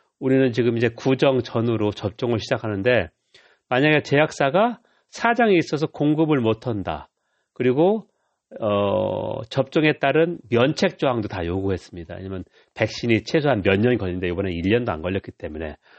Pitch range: 100-150 Hz